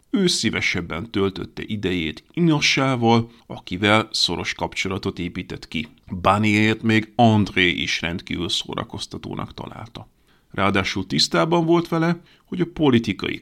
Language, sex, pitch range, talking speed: Hungarian, male, 95-125 Hz, 105 wpm